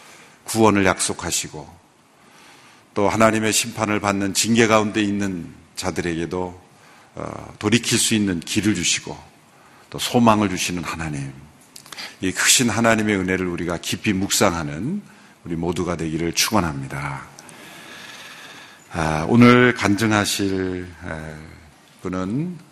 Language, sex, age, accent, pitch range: Korean, male, 50-69, native, 85-105 Hz